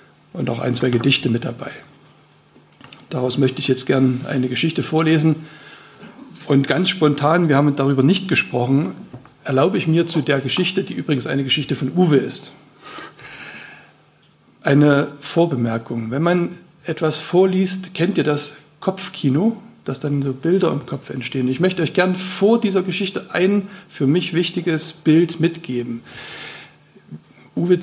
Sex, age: male, 60-79